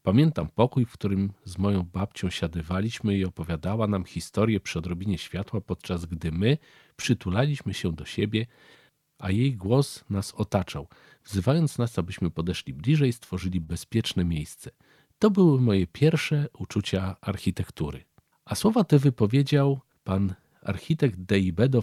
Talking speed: 135 wpm